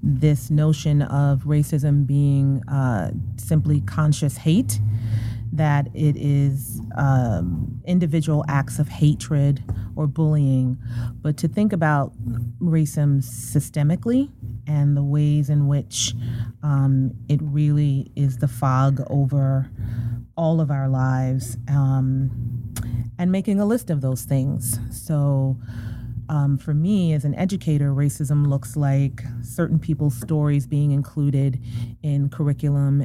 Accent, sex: American, female